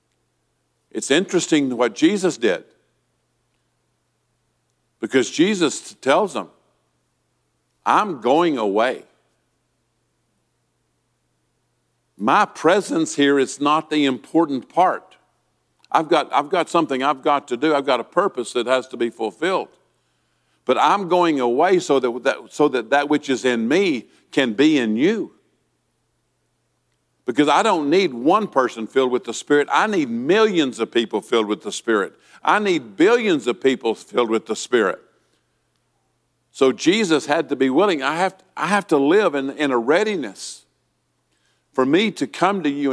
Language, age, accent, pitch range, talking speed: English, 50-69, American, 120-165 Hz, 145 wpm